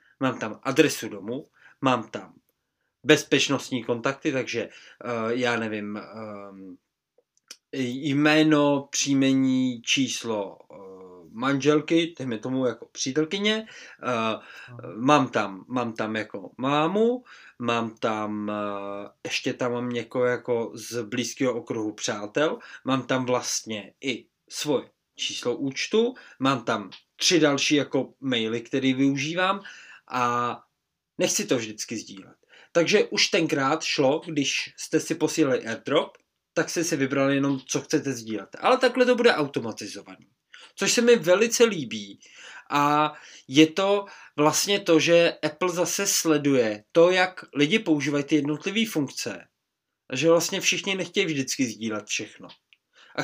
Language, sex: Czech, male